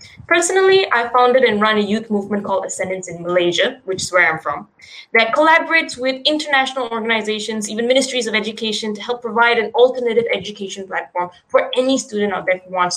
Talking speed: 175 wpm